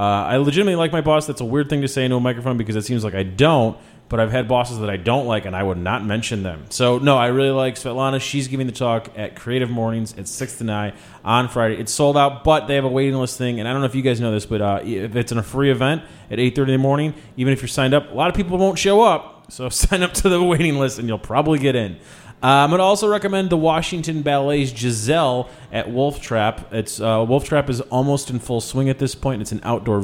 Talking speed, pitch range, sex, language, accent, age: 275 wpm, 115-145 Hz, male, English, American, 30-49